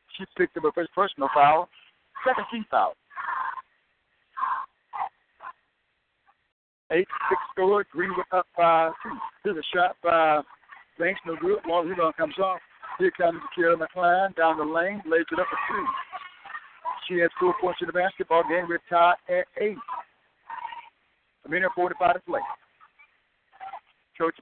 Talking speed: 150 wpm